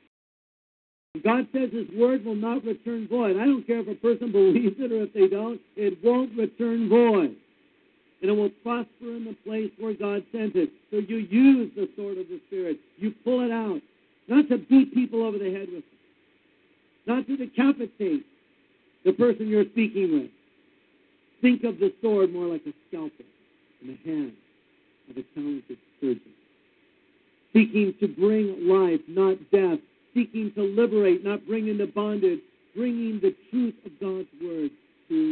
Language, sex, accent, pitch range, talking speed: English, male, American, 205-315 Hz, 170 wpm